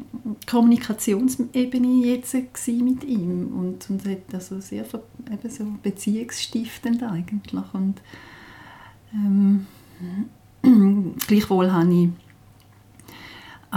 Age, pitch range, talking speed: 40-59, 160-205 Hz, 70 wpm